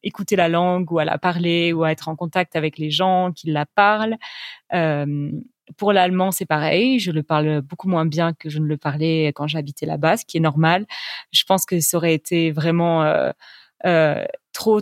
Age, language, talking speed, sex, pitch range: 30-49, French, 205 wpm, female, 160-185 Hz